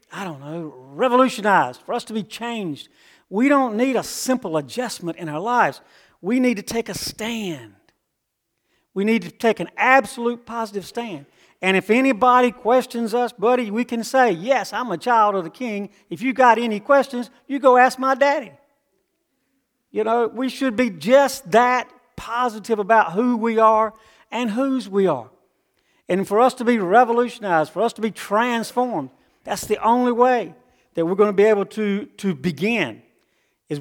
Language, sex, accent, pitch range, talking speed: English, male, American, 160-235 Hz, 175 wpm